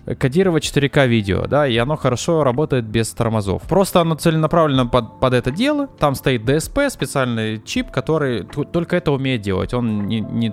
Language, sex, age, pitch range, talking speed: Russian, male, 20-39, 120-160 Hz, 170 wpm